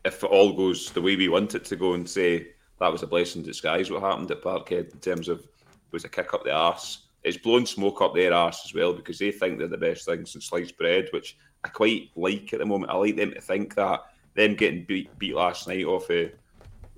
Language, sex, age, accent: English, male, 30-49, British